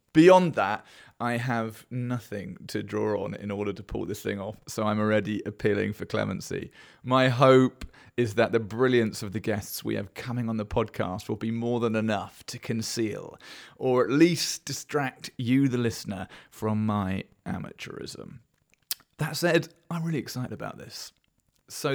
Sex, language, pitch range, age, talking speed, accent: male, English, 105-130 Hz, 30-49, 165 wpm, British